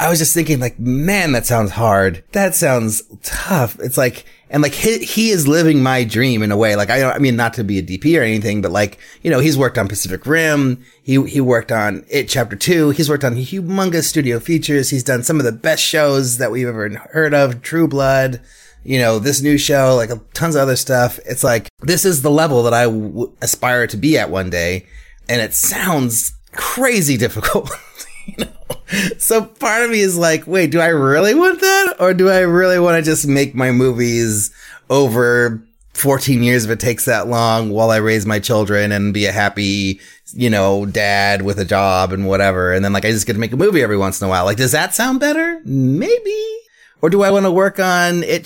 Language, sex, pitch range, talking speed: English, male, 110-165 Hz, 220 wpm